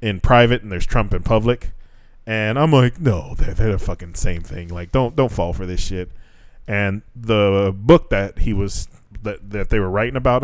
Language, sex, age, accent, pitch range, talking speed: English, male, 20-39, American, 95-120 Hz, 205 wpm